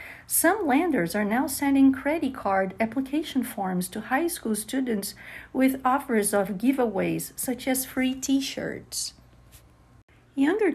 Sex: female